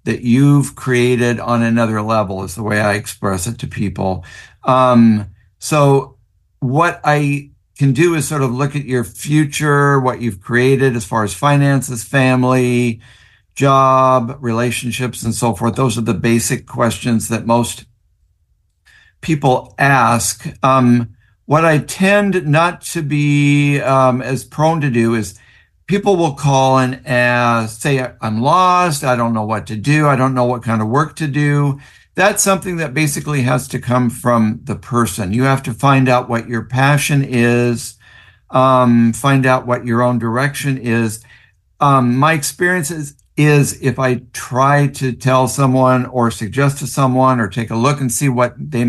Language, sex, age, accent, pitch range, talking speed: English, male, 60-79, American, 115-145 Hz, 165 wpm